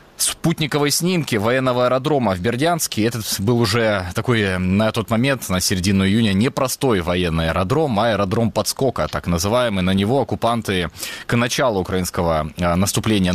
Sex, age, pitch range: male, 20-39, 90-120 Hz